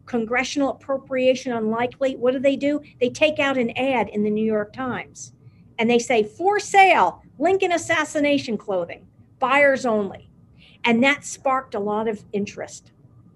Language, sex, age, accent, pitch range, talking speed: English, female, 50-69, American, 215-280 Hz, 155 wpm